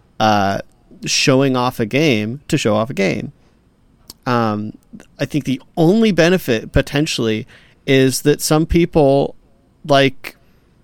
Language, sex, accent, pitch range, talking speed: English, male, American, 115-140 Hz, 115 wpm